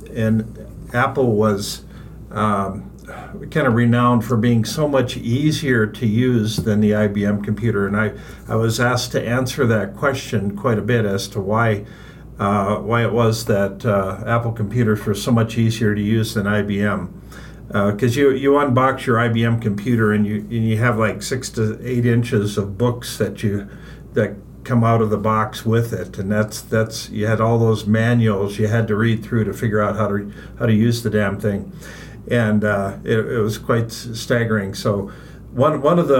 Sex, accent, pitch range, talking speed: male, American, 105-120 Hz, 190 wpm